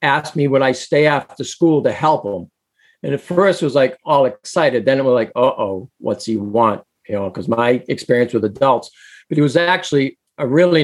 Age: 50-69